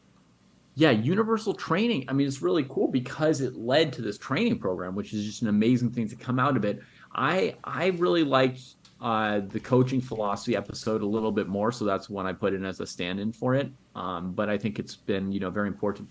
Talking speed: 225 wpm